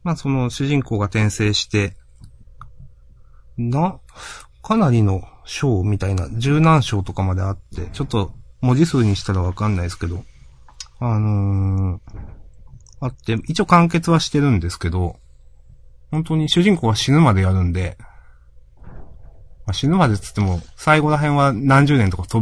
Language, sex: Japanese, male